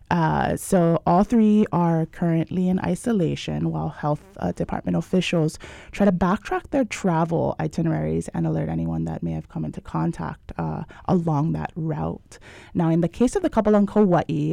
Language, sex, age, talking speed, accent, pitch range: English, female, 20-39, 170 wpm, American, 155-185 Hz